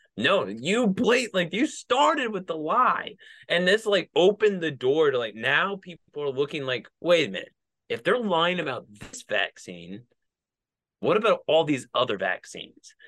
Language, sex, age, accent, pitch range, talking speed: English, male, 20-39, American, 120-190 Hz, 175 wpm